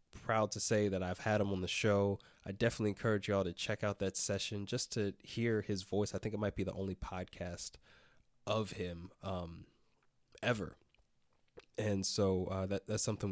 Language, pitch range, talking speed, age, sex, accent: English, 90-105 Hz, 190 wpm, 20-39, male, American